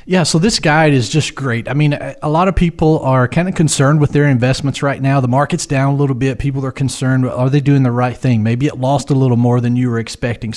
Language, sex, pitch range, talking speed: English, male, 130-155 Hz, 265 wpm